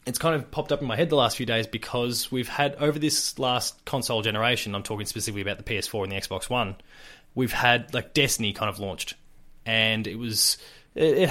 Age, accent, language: 20-39, Australian, English